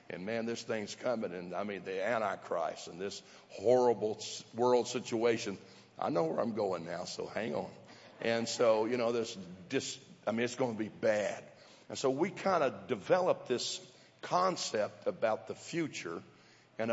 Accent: American